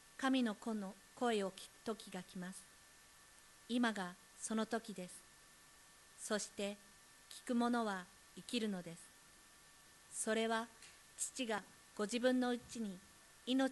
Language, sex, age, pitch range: Japanese, female, 50-69, 185-225 Hz